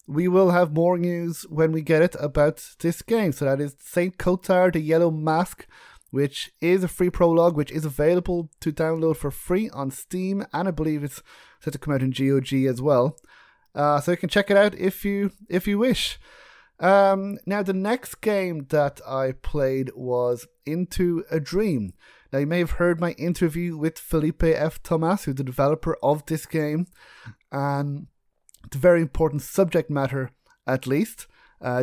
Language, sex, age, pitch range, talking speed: English, male, 20-39, 135-175 Hz, 180 wpm